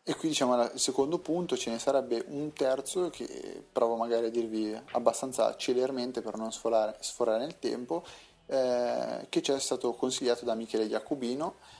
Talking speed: 170 wpm